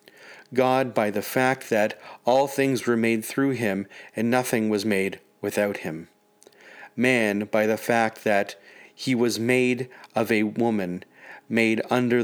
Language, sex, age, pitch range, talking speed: English, male, 30-49, 110-125 Hz, 145 wpm